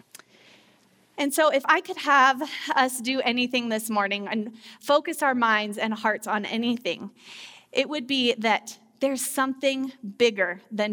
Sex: female